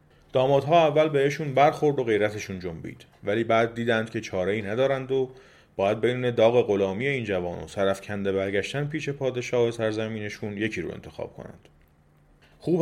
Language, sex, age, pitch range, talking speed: Persian, male, 30-49, 95-135 Hz, 150 wpm